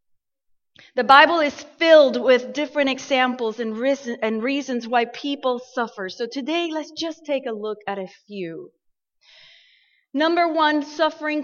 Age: 30-49